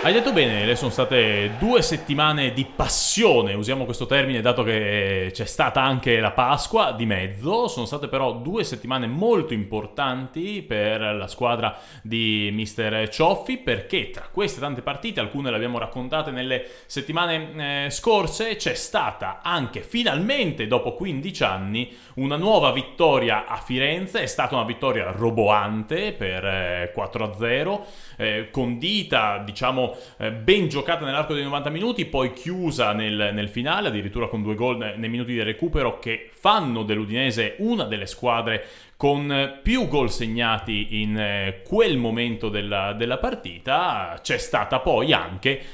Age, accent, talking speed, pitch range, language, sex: 30-49, native, 145 wpm, 110-145 Hz, Italian, male